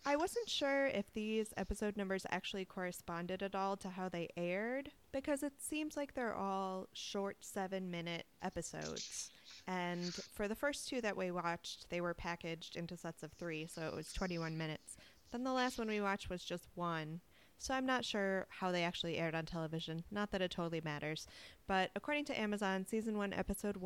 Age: 20-39